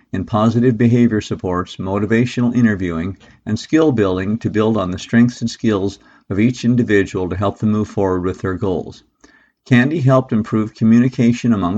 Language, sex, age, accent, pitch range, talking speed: English, male, 50-69, American, 100-120 Hz, 165 wpm